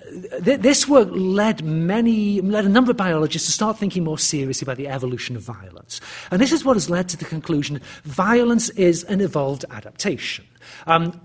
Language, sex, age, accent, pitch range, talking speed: English, male, 40-59, British, 135-205 Hz, 180 wpm